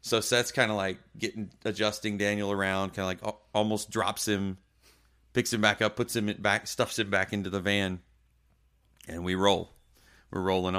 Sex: male